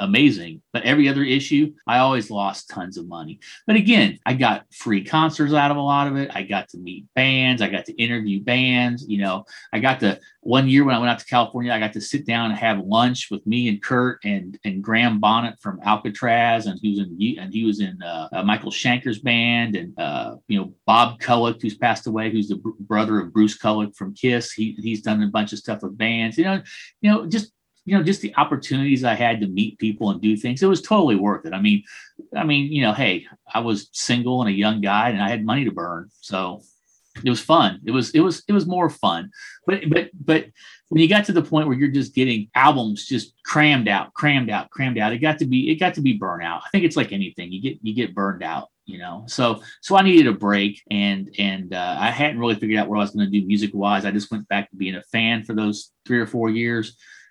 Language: English